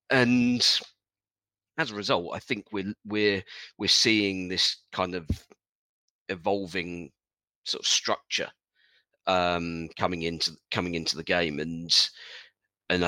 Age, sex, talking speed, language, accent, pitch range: 40-59, male, 120 wpm, English, British, 85-95 Hz